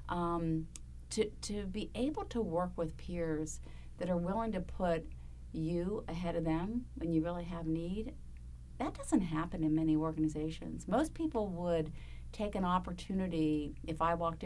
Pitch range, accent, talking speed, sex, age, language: 155-195 Hz, American, 160 wpm, female, 50-69, English